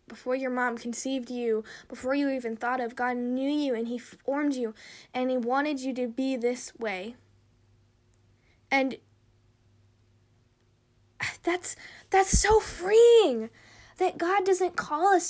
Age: 10-29